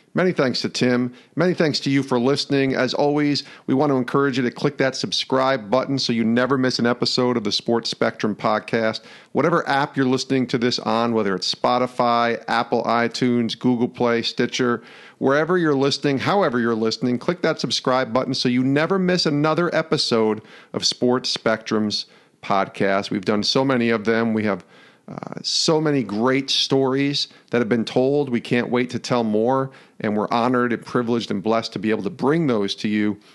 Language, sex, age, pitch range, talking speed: English, male, 50-69, 115-140 Hz, 190 wpm